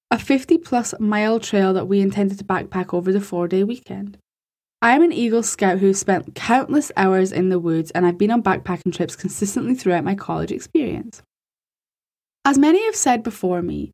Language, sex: English, female